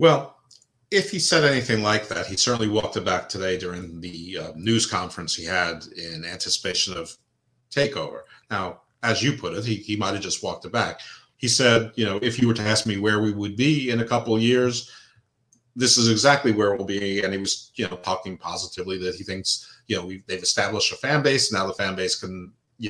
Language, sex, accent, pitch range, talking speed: English, male, American, 95-125 Hz, 225 wpm